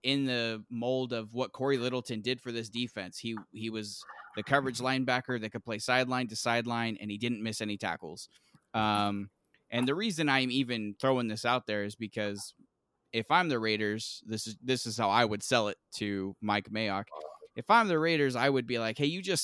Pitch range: 110-130 Hz